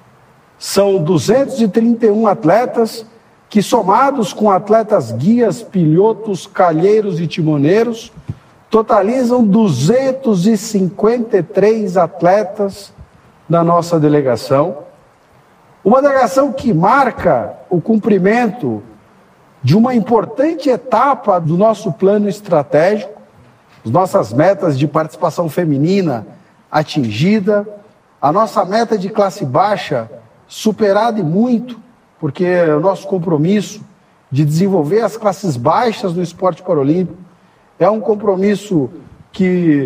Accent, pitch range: Brazilian, 165-220 Hz